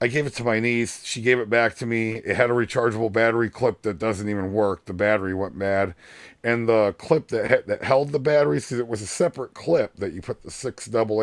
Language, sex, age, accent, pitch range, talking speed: English, male, 40-59, American, 105-125 Hz, 250 wpm